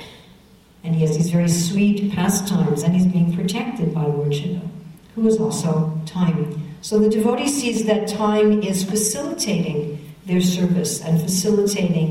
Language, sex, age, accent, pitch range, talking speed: English, female, 60-79, American, 170-205 Hz, 150 wpm